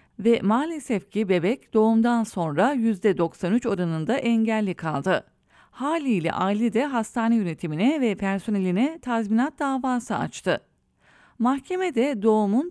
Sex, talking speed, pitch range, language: female, 105 wpm, 185-250 Hz, English